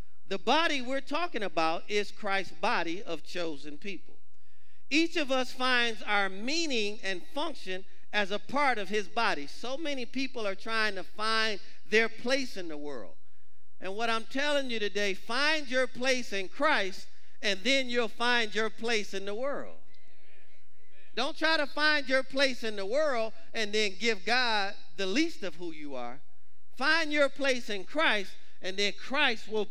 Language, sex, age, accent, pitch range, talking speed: English, male, 40-59, American, 190-270 Hz, 170 wpm